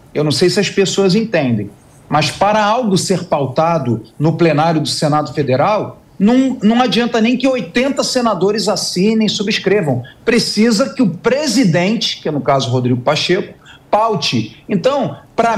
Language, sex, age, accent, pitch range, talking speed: Portuguese, male, 40-59, Brazilian, 150-205 Hz, 155 wpm